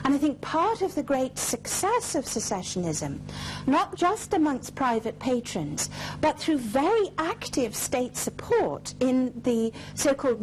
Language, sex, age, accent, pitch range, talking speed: English, female, 50-69, British, 235-305 Hz, 140 wpm